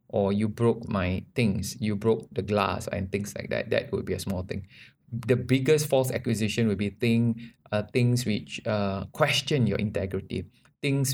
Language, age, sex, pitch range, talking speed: English, 20-39, male, 100-120 Hz, 185 wpm